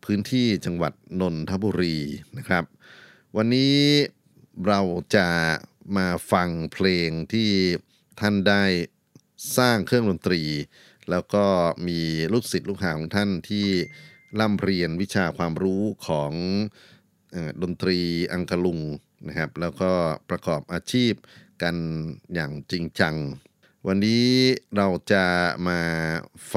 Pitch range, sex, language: 80-100 Hz, male, Thai